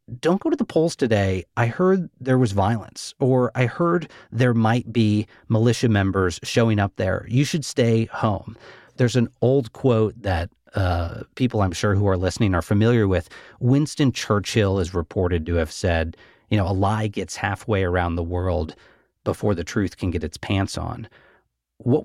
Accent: American